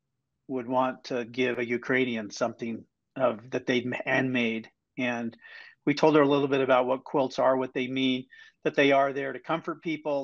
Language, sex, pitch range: English, male, 125-145 Hz